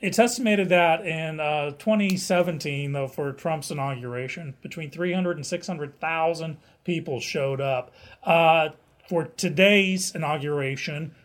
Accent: American